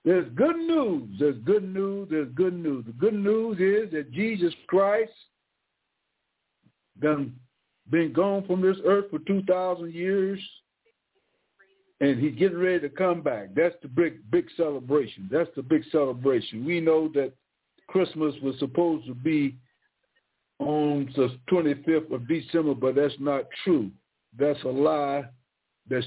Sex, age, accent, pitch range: male, 60-79, American, 135-170 Hz